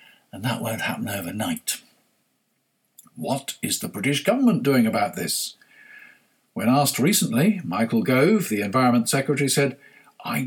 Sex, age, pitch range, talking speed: male, 50-69, 130-215 Hz, 130 wpm